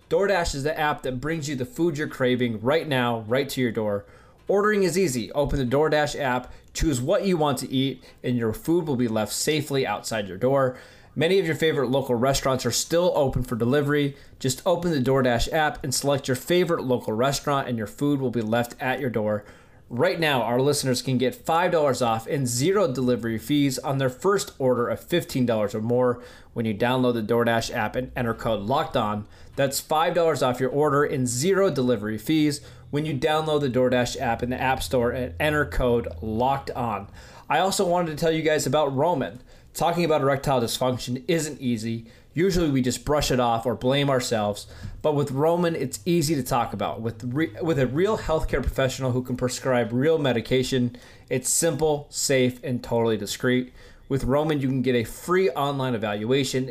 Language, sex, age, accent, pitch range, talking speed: English, male, 20-39, American, 125-150 Hz, 195 wpm